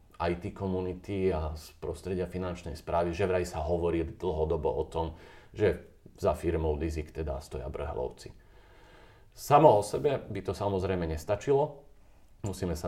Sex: male